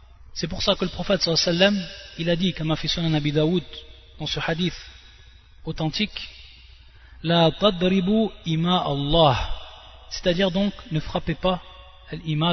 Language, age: French, 30-49